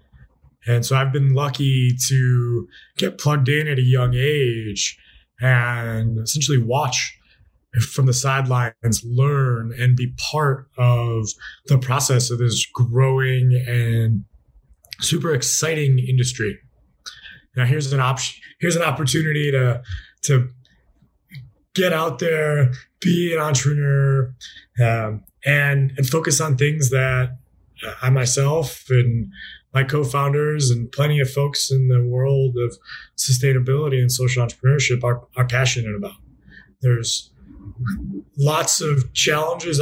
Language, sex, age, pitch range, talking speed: English, male, 20-39, 120-140 Hz, 120 wpm